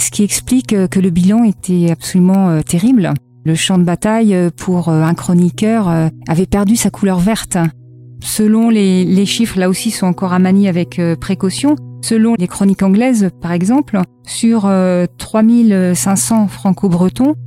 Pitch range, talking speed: 170-210 Hz, 160 wpm